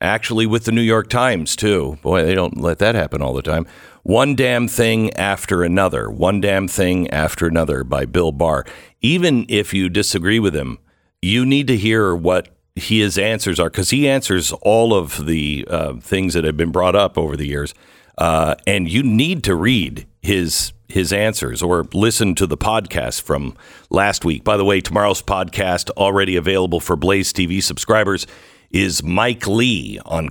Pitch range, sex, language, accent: 90-115 Hz, male, English, American